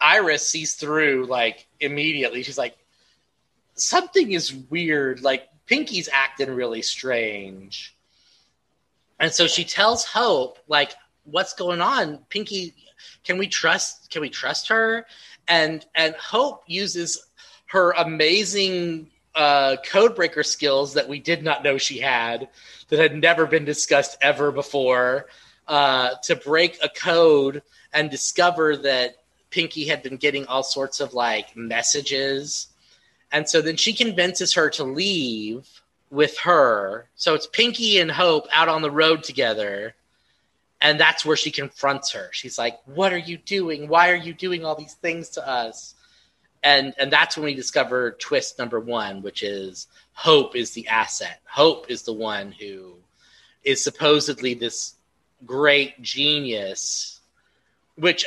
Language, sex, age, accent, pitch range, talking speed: English, male, 30-49, American, 135-170 Hz, 145 wpm